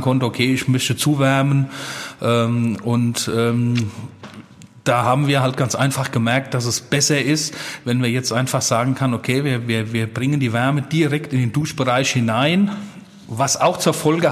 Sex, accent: male, German